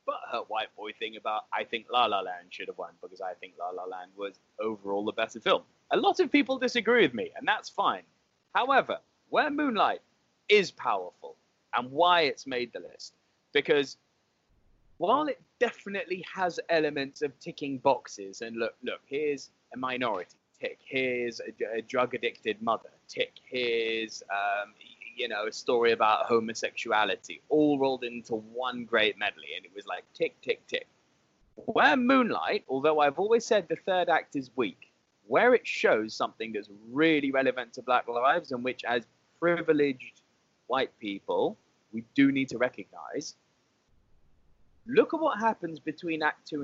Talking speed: 160 wpm